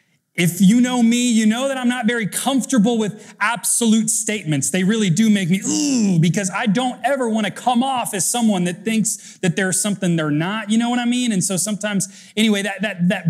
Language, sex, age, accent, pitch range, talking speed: English, male, 30-49, American, 155-215 Hz, 215 wpm